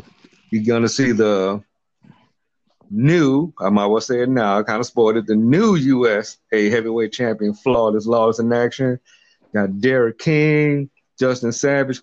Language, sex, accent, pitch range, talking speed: English, male, American, 110-135 Hz, 160 wpm